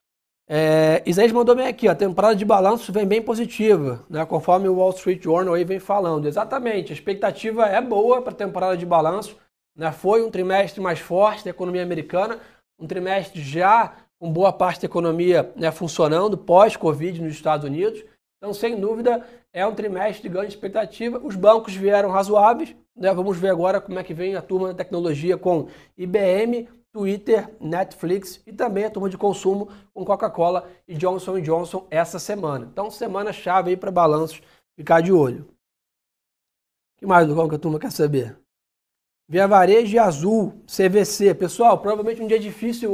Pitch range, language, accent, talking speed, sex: 180-215 Hz, Portuguese, Brazilian, 175 wpm, male